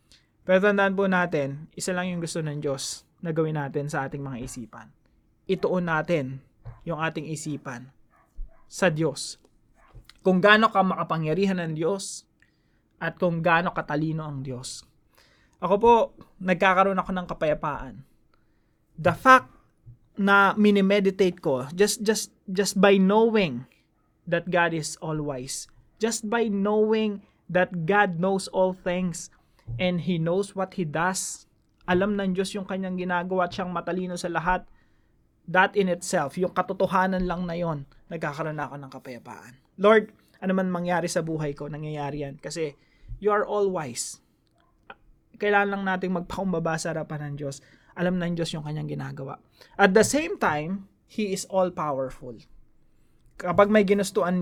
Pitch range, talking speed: 145-190 Hz, 145 wpm